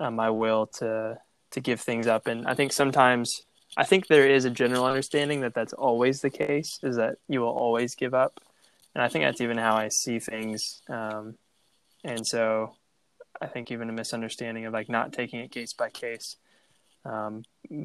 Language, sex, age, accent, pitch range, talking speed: English, male, 10-29, American, 110-125 Hz, 190 wpm